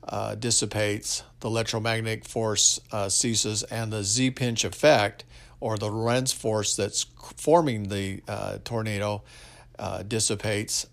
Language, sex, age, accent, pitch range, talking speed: English, male, 50-69, American, 105-120 Hz, 120 wpm